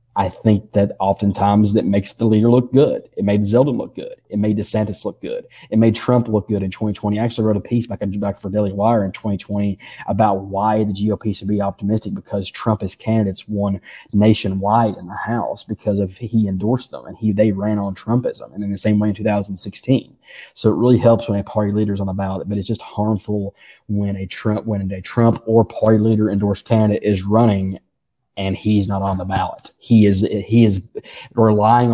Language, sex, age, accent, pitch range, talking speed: English, male, 20-39, American, 95-105 Hz, 215 wpm